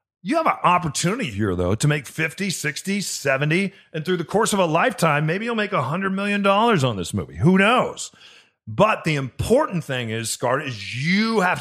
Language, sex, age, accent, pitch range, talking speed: English, male, 40-59, American, 115-165 Hz, 190 wpm